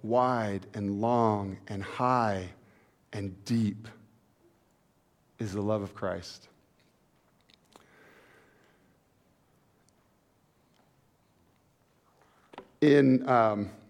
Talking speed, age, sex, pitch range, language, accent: 55 wpm, 50-69, male, 110-135 Hz, English, American